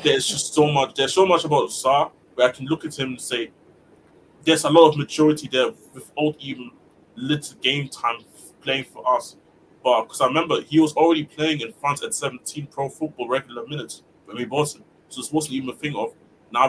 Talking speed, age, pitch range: 210 wpm, 20-39, 125-150 Hz